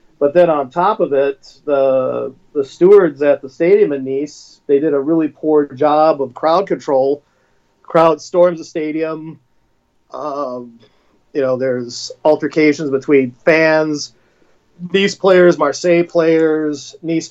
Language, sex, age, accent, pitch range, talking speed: English, male, 40-59, American, 135-170 Hz, 135 wpm